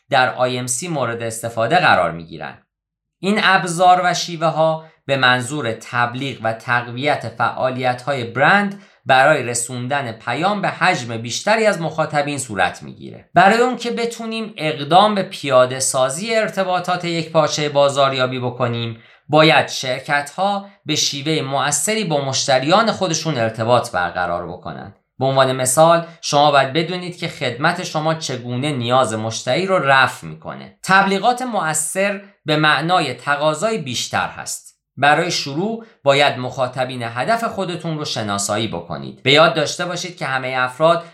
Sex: male